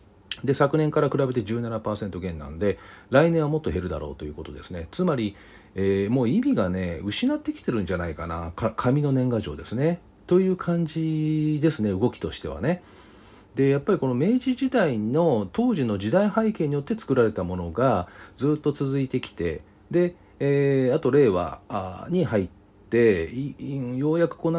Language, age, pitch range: Japanese, 40-59, 95-150 Hz